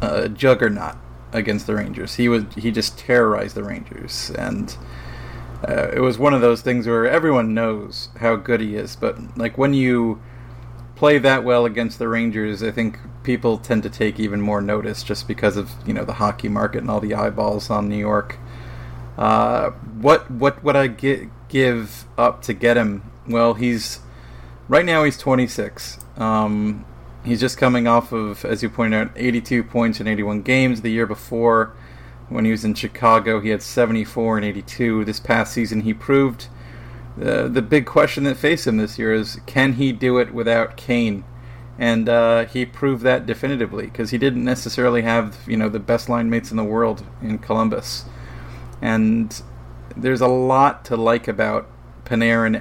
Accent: American